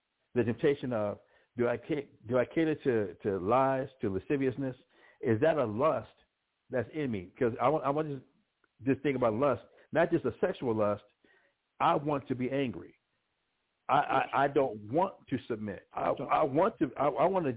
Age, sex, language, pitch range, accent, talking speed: 60-79, male, English, 115-145 Hz, American, 190 wpm